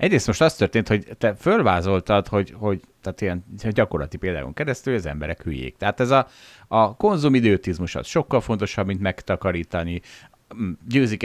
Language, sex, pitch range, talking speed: Hungarian, male, 95-130 Hz, 155 wpm